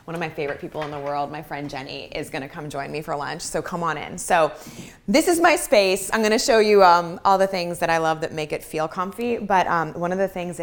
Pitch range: 145-170 Hz